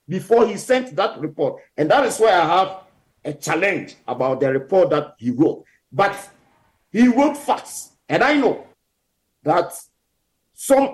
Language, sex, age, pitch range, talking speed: English, male, 50-69, 180-255 Hz, 155 wpm